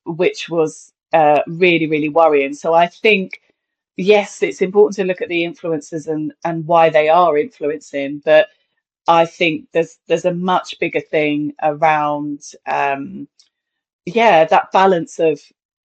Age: 30-49